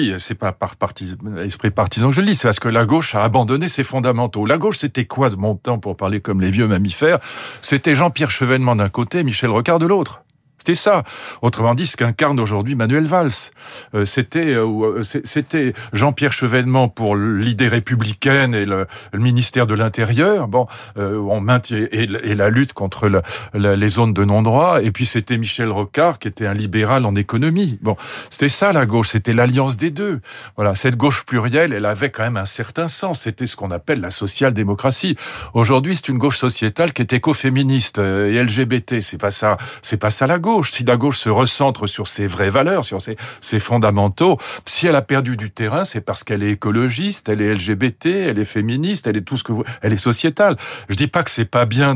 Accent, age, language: French, 40-59, French